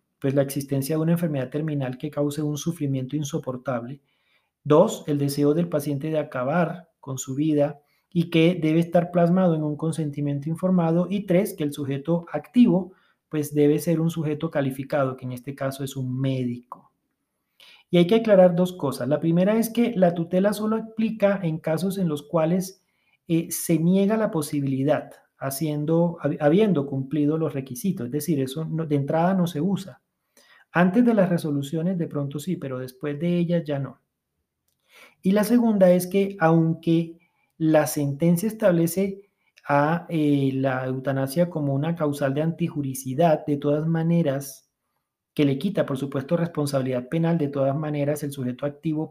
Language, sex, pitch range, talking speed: Spanish, male, 140-175 Hz, 165 wpm